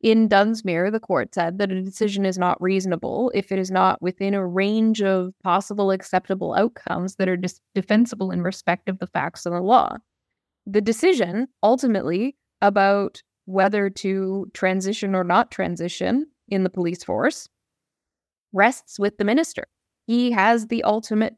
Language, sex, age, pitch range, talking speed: English, female, 10-29, 190-230 Hz, 155 wpm